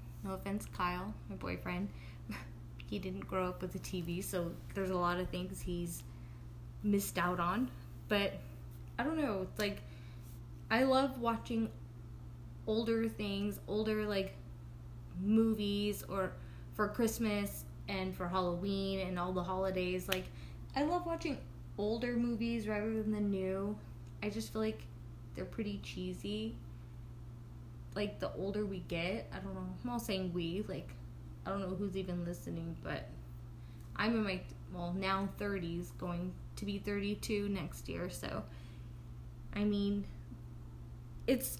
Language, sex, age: English, female, 20-39